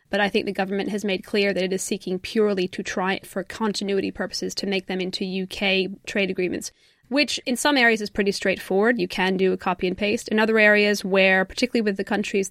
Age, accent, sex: 20-39, American, female